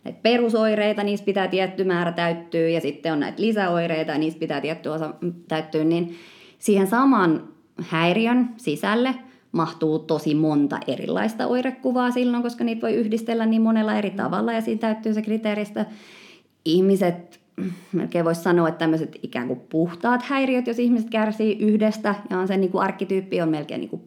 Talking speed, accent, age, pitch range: 160 wpm, native, 30-49, 160-215 Hz